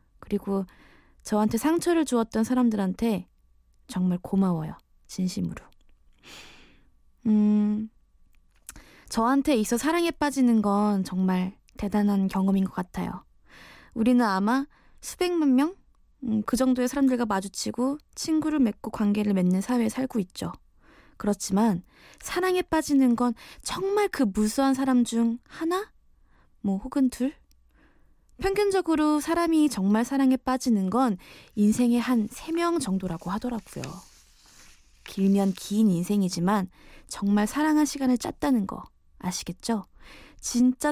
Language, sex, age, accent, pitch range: Korean, female, 20-39, native, 195-265 Hz